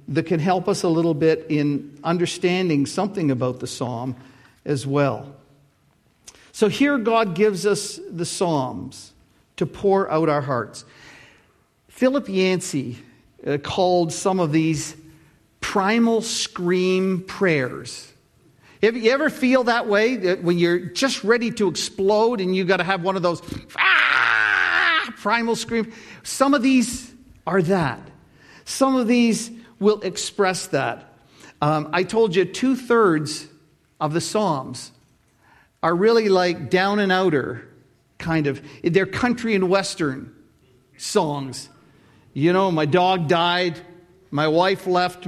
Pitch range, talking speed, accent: 150-195 Hz, 135 wpm, American